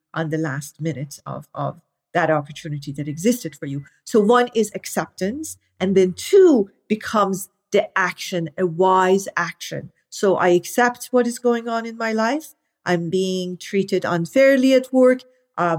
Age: 40-59